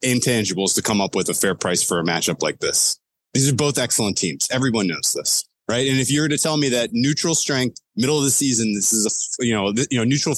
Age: 30-49